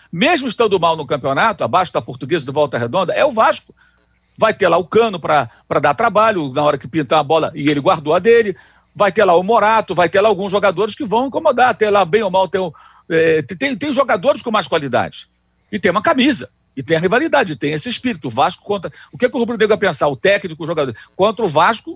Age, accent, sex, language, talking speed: 60-79, Brazilian, male, Portuguese, 255 wpm